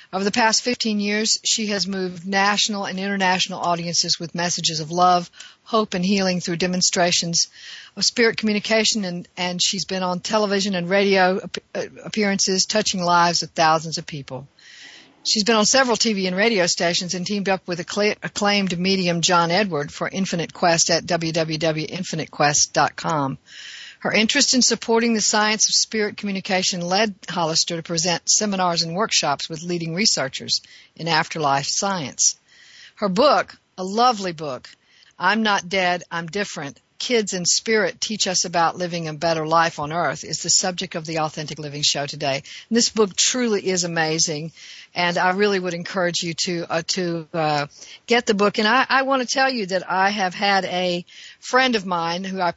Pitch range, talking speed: 170-205 Hz, 170 wpm